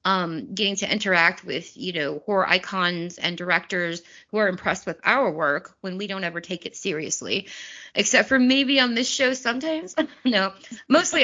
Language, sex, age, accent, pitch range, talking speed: English, female, 20-39, American, 180-215 Hz, 175 wpm